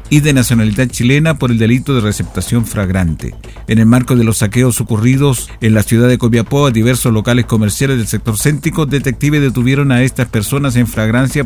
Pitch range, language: 115-140 Hz, Spanish